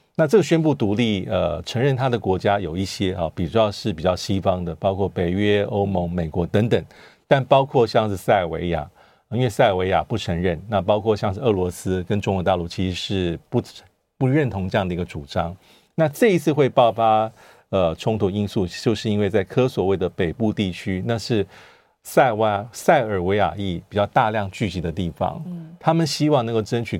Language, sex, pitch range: Chinese, male, 90-115 Hz